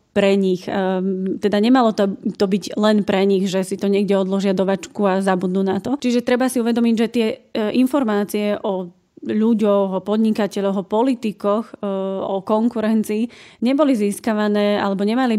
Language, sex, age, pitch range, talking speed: Slovak, female, 30-49, 200-230 Hz, 145 wpm